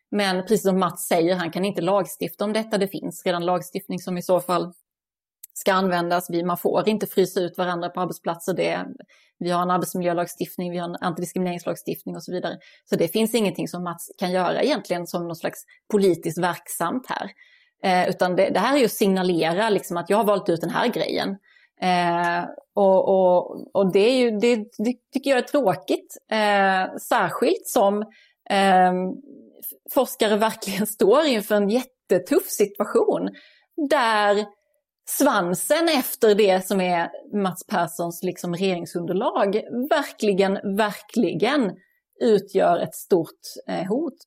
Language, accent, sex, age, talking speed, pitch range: Swedish, native, female, 30-49, 150 wpm, 180-220 Hz